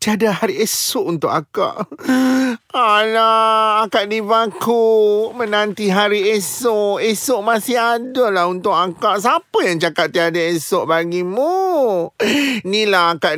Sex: male